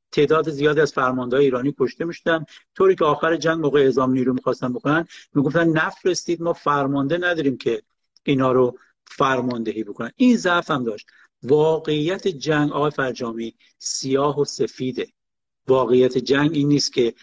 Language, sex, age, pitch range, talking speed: Persian, male, 50-69, 130-165 Hz, 145 wpm